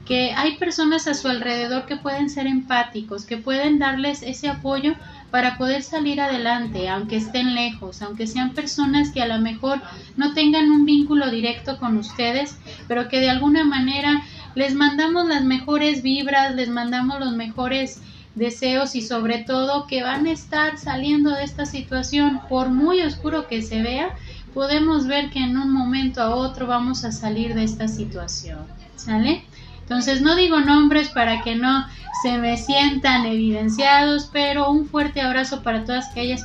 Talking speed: 165 wpm